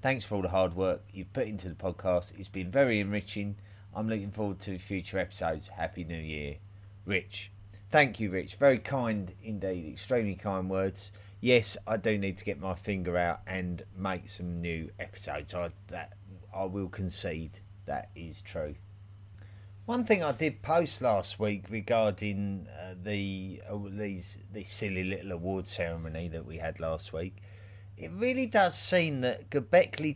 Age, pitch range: 30-49, 95-110 Hz